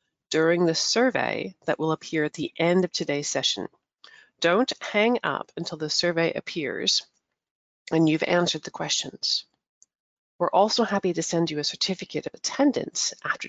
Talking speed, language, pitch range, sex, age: 155 wpm, English, 150-195 Hz, female, 40-59